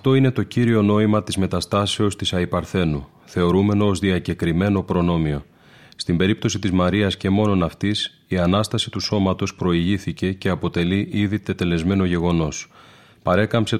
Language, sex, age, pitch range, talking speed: Greek, male, 30-49, 90-105 Hz, 135 wpm